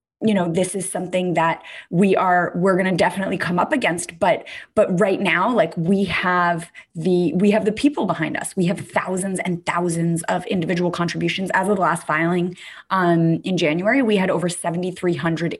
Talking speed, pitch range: 190 wpm, 170-195 Hz